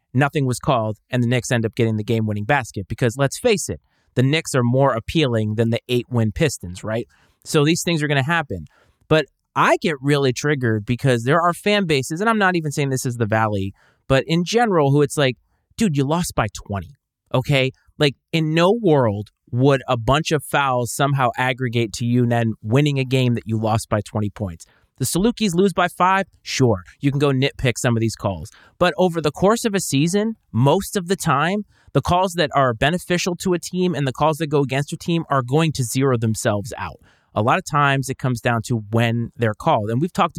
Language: English